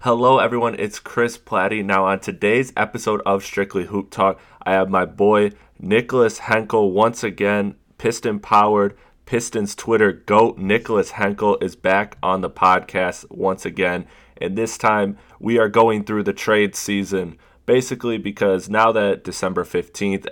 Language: English